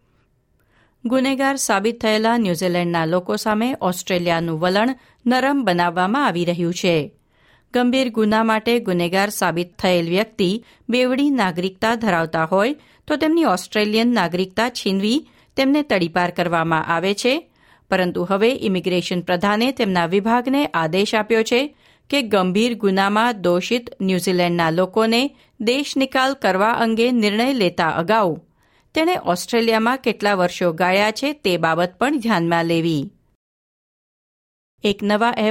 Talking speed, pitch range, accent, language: 120 wpm, 180-240 Hz, native, Gujarati